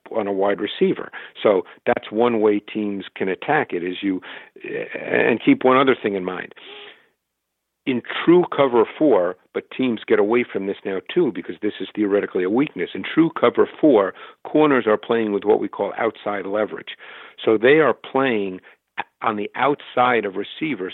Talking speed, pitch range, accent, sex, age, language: 175 wpm, 105-145 Hz, American, male, 50-69, English